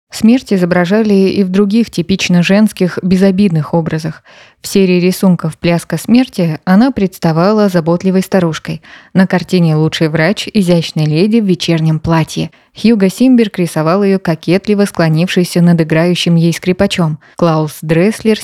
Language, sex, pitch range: Russian, female, 165-195 Hz